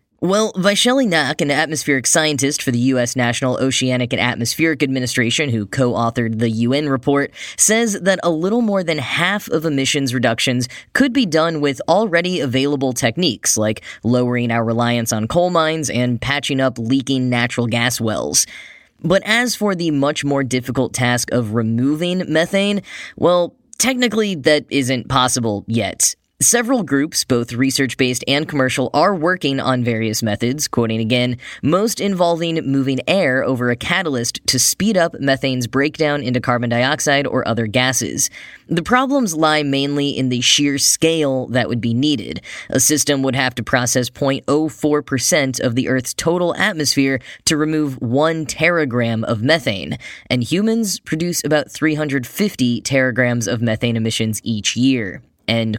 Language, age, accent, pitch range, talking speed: English, 10-29, American, 125-160 Hz, 150 wpm